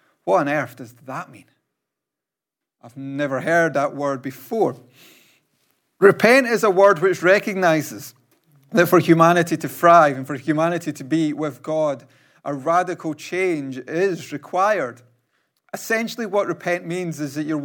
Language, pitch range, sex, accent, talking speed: English, 140-175 Hz, male, British, 145 wpm